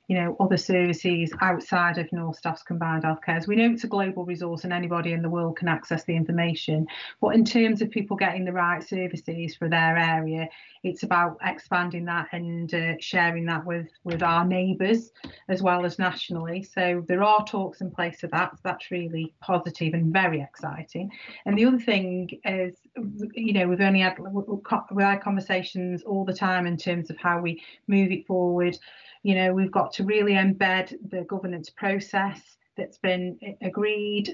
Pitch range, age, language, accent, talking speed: 175-200 Hz, 30-49, English, British, 185 wpm